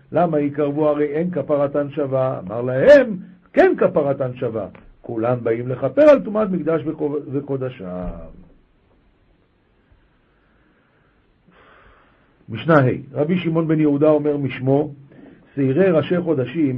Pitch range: 145-205 Hz